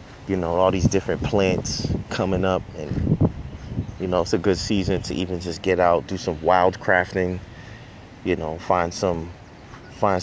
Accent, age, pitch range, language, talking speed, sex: American, 30-49, 90-100 Hz, English, 170 wpm, male